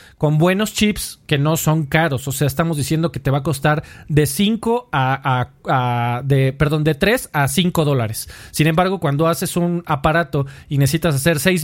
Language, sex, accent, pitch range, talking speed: Spanish, male, Mexican, 140-180 Hz, 165 wpm